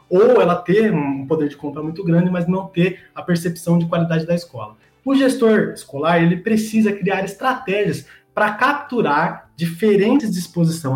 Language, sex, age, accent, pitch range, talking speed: Portuguese, male, 20-39, Brazilian, 155-205 Hz, 160 wpm